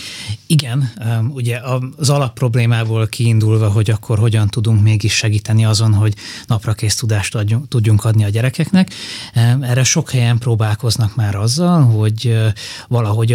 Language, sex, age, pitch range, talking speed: Hungarian, male, 20-39, 105-115 Hz, 120 wpm